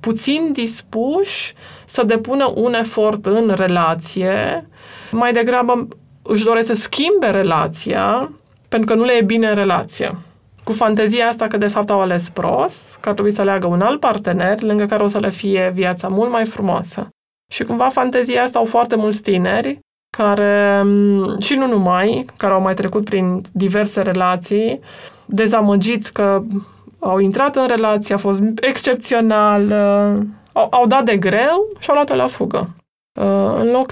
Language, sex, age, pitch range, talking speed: Romanian, female, 20-39, 200-245 Hz, 160 wpm